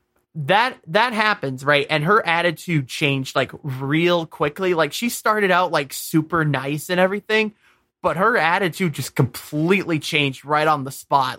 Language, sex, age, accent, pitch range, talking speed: English, male, 20-39, American, 135-180 Hz, 160 wpm